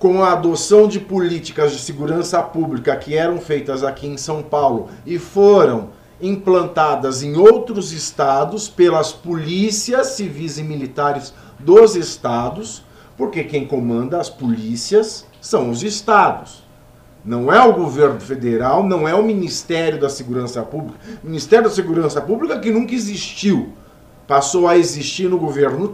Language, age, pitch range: Portuguese, 50-69, 135-185 Hz